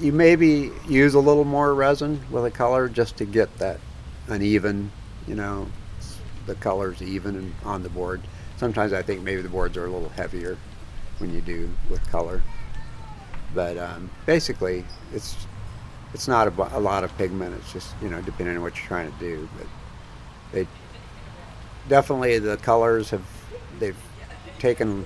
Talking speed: 165 wpm